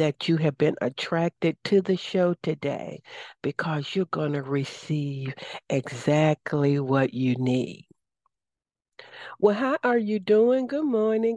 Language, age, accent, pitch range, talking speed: English, 60-79, American, 150-185 Hz, 125 wpm